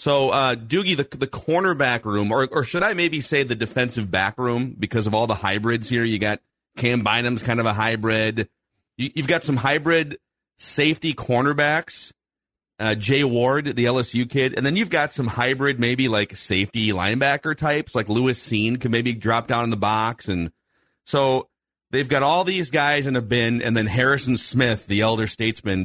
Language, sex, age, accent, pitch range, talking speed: English, male, 30-49, American, 110-135 Hz, 190 wpm